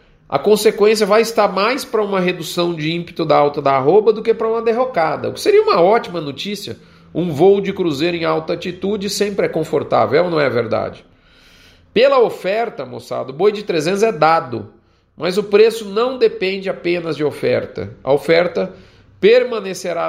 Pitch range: 155-200 Hz